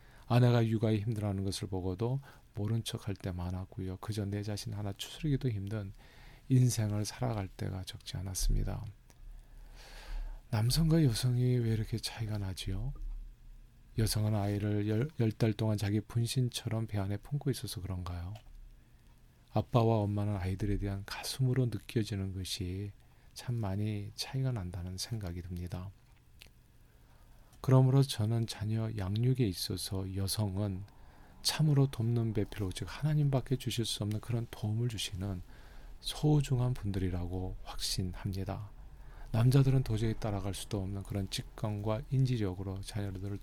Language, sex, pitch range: Korean, male, 95-120 Hz